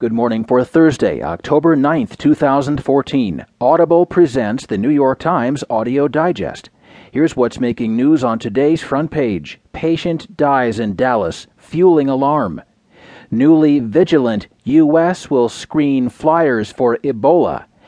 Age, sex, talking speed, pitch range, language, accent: 40-59, male, 125 wpm, 120-165 Hz, English, American